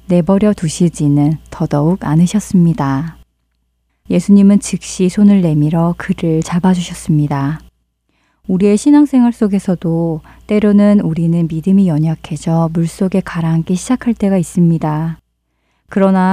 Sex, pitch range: female, 160-210 Hz